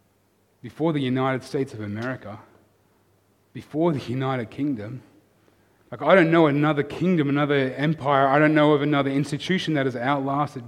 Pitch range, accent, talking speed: 110-145 Hz, Australian, 150 wpm